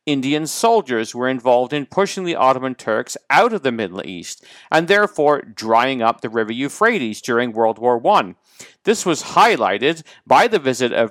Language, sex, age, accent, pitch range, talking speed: English, male, 50-69, American, 115-155 Hz, 175 wpm